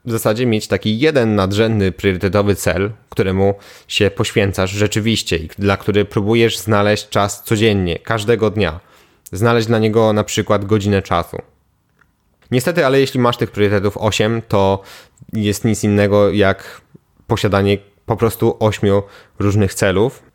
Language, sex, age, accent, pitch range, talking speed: Polish, male, 20-39, native, 95-115 Hz, 135 wpm